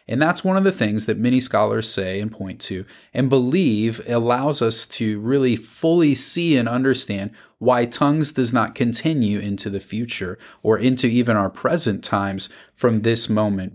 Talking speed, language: 175 wpm, English